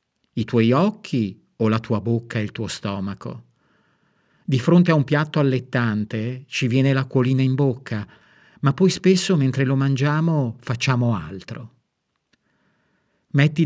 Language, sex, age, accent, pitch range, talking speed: Italian, male, 50-69, native, 110-140 Hz, 135 wpm